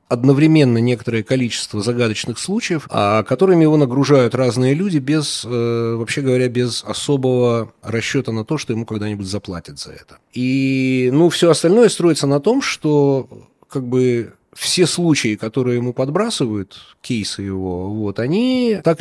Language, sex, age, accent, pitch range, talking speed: Russian, male, 30-49, native, 110-145 Hz, 140 wpm